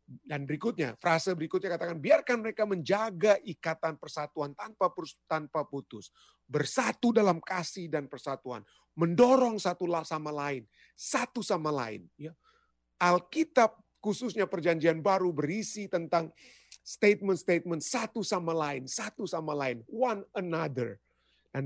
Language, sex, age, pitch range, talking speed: Indonesian, male, 30-49, 145-200 Hz, 115 wpm